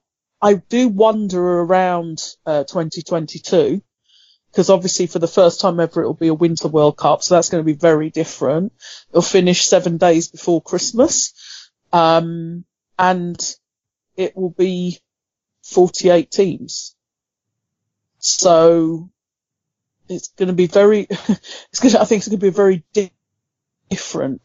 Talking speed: 135 wpm